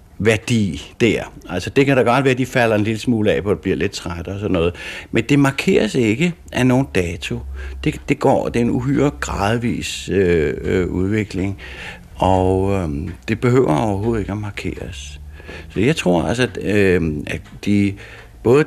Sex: male